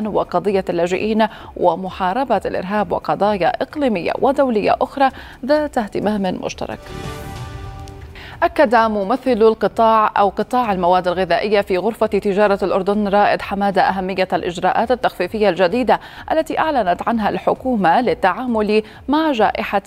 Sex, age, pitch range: female, 30-49, 190-245 Hz